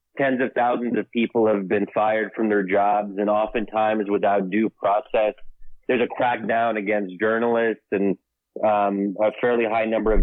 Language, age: English, 30-49